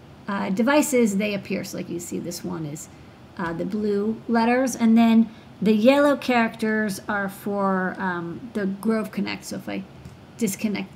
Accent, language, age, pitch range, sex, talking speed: American, English, 40-59, 195-230 Hz, female, 165 wpm